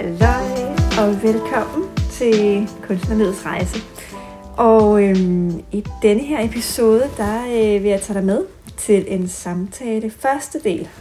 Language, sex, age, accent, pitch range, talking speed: Danish, female, 30-49, native, 190-230 Hz, 135 wpm